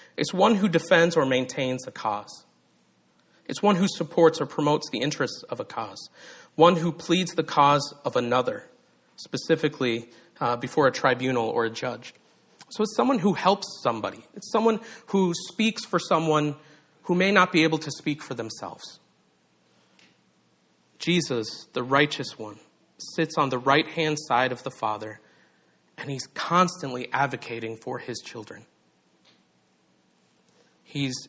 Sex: male